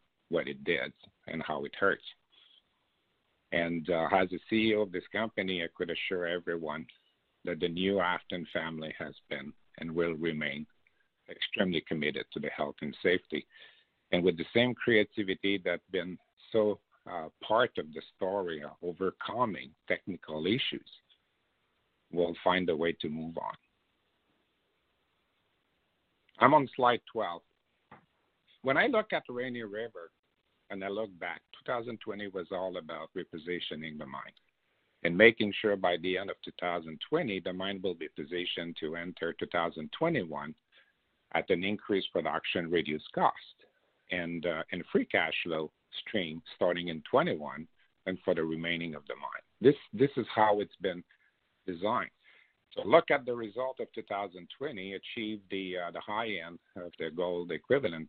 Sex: male